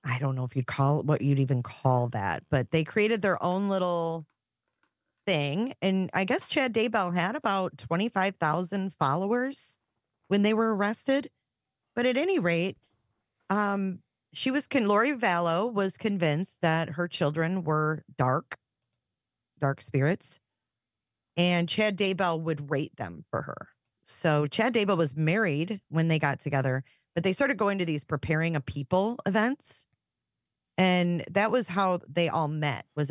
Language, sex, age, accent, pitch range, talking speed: English, female, 30-49, American, 140-185 Hz, 155 wpm